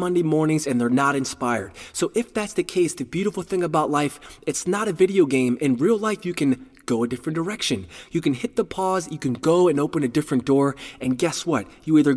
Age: 20-39